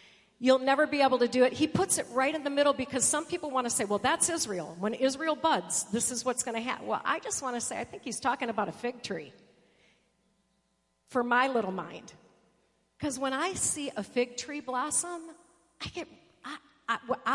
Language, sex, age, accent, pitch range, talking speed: English, female, 50-69, American, 210-275 Hz, 210 wpm